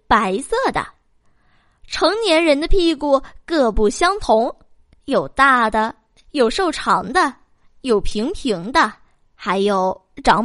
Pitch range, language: 235-350 Hz, Chinese